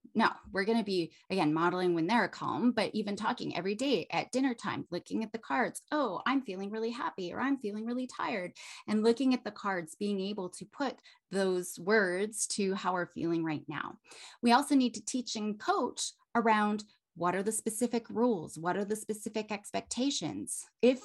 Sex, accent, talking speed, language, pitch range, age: female, American, 190 wpm, English, 180-235 Hz, 30-49